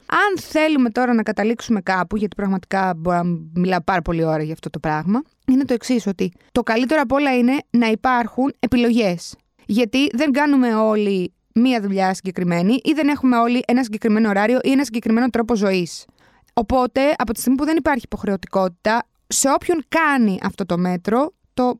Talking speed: 170 wpm